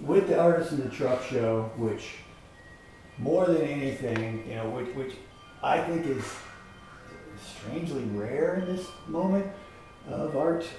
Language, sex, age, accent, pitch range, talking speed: English, male, 40-59, American, 105-135 Hz, 140 wpm